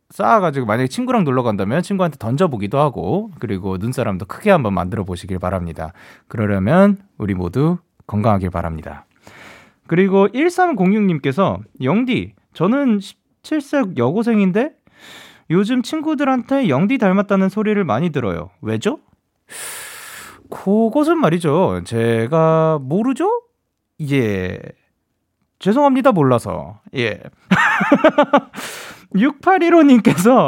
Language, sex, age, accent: Korean, male, 30-49, native